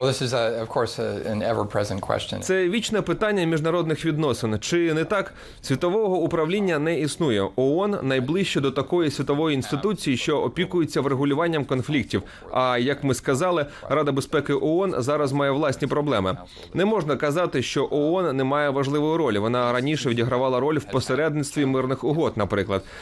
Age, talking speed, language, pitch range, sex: 30-49, 135 wpm, Ukrainian, 125-160 Hz, male